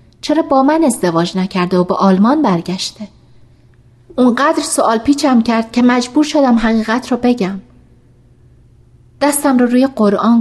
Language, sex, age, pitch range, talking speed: Persian, female, 30-49, 160-240 Hz, 135 wpm